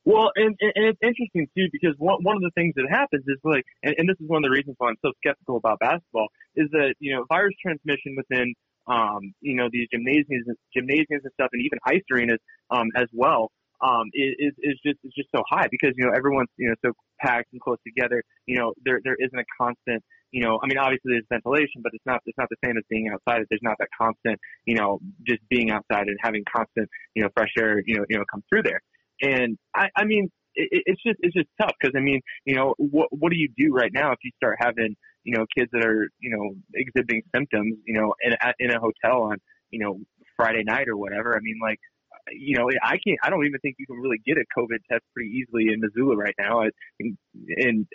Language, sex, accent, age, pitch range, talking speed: English, male, American, 20-39, 115-145 Hz, 240 wpm